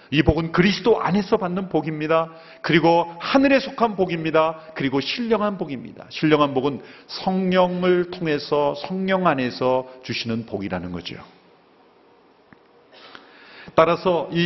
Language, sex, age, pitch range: Korean, male, 40-59, 145-210 Hz